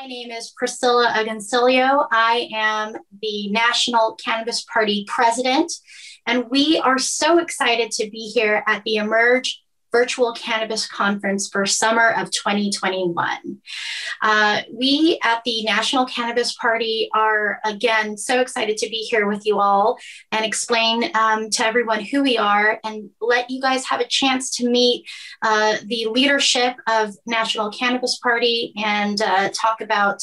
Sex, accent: female, American